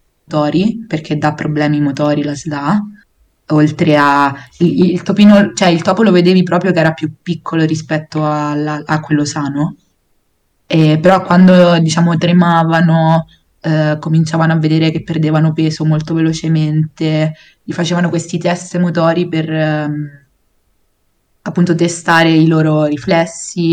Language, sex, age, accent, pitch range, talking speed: Italian, female, 20-39, native, 150-165 Hz, 130 wpm